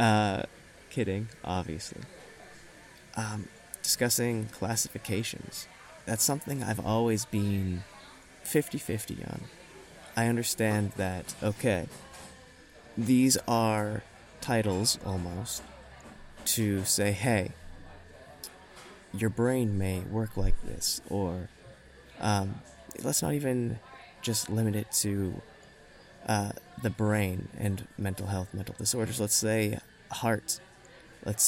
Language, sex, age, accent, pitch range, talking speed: English, male, 20-39, American, 95-115 Hz, 95 wpm